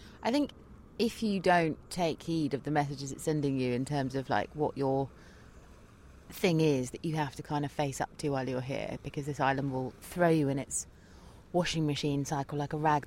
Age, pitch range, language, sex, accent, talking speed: 30-49, 135-160 Hz, English, female, British, 215 wpm